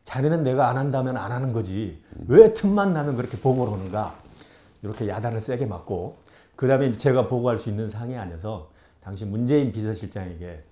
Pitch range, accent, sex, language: 95-130 Hz, native, male, Korean